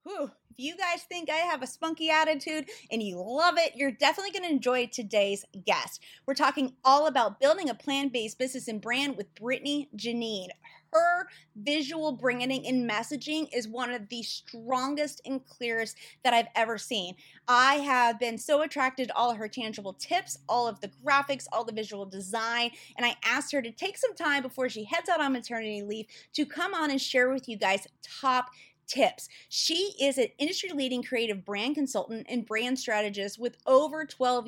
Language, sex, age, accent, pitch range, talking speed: English, female, 30-49, American, 225-295 Hz, 185 wpm